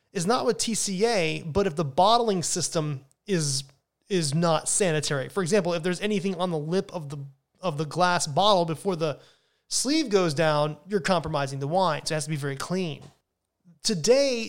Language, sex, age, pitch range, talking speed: English, male, 30-49, 155-210 Hz, 180 wpm